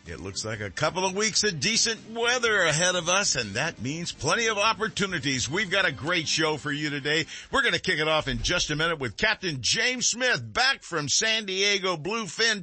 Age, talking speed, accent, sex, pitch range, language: 50-69, 220 wpm, American, male, 135-195 Hz, English